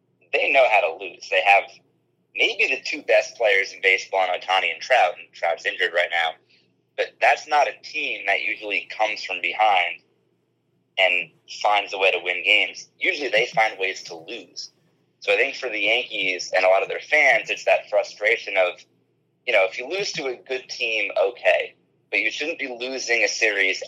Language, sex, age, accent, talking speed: English, male, 30-49, American, 200 wpm